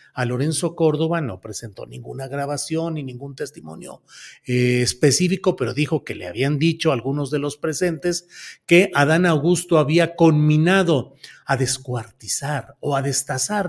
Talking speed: 140 wpm